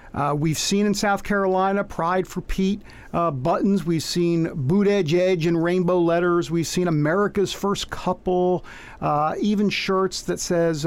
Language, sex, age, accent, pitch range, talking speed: English, male, 50-69, American, 145-190 Hz, 160 wpm